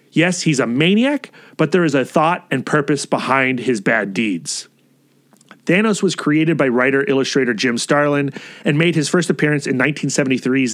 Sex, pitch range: male, 135-175 Hz